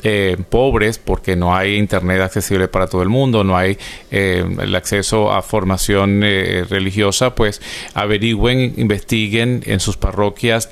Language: Spanish